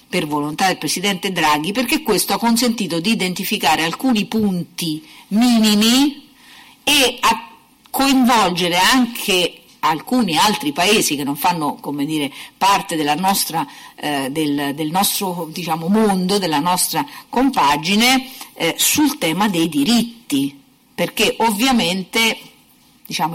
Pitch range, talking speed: 165-235 Hz, 120 wpm